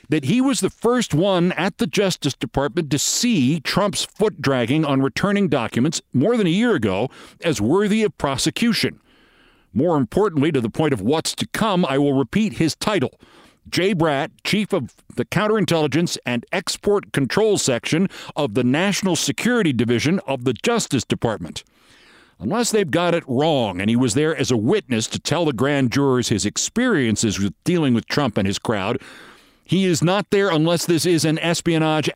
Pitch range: 130-175 Hz